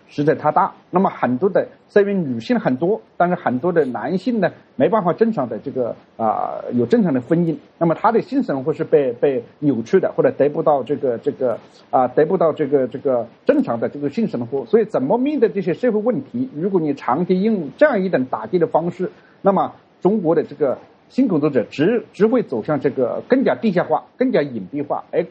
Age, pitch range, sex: 50-69, 150-235 Hz, male